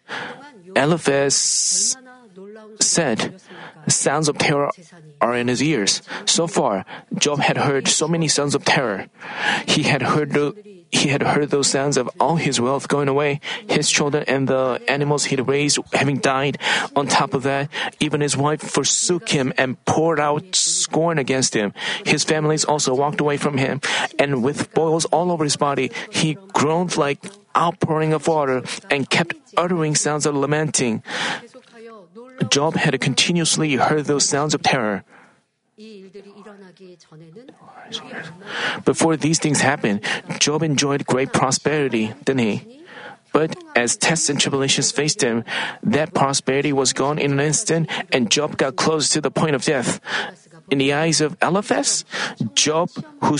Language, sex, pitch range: Korean, male, 140-170 Hz